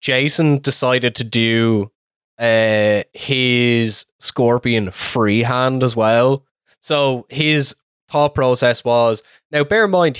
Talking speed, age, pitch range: 110 wpm, 20-39, 115-135 Hz